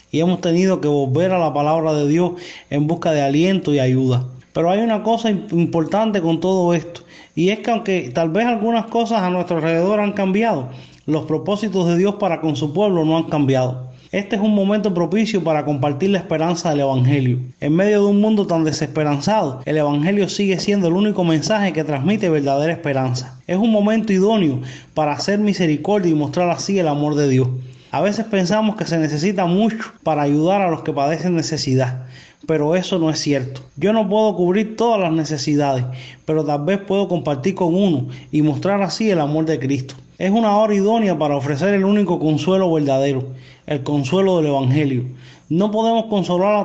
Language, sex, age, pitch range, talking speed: Spanish, male, 30-49, 145-195 Hz, 190 wpm